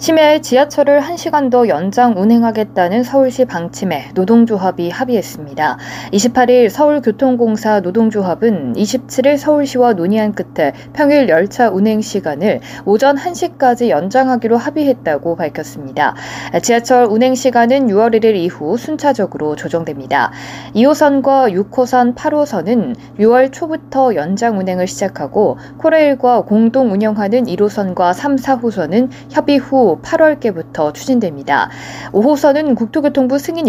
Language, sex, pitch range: Korean, female, 180-260 Hz